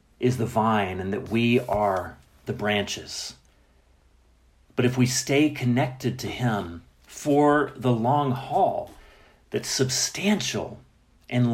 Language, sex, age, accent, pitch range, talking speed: English, male, 40-59, American, 105-135 Hz, 120 wpm